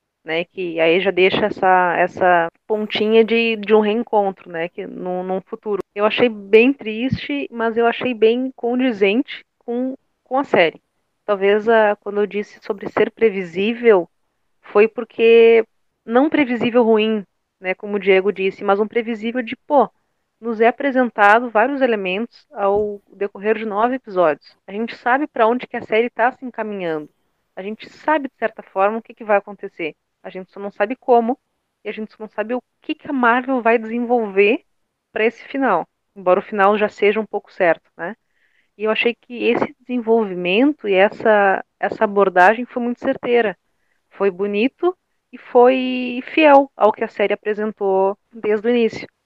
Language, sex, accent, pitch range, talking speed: Portuguese, female, Brazilian, 200-240 Hz, 170 wpm